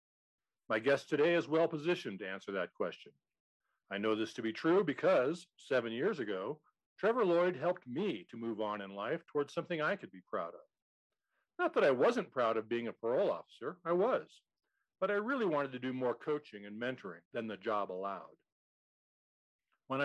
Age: 50-69